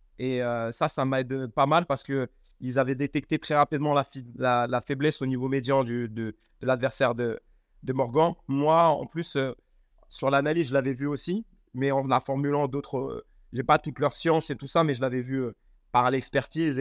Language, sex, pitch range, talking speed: French, male, 130-150 Hz, 215 wpm